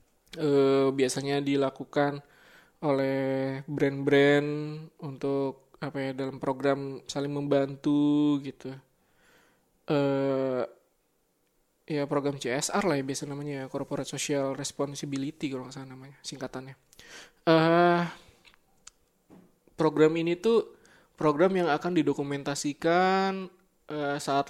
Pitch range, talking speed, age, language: 135-160 Hz, 95 wpm, 20-39, Indonesian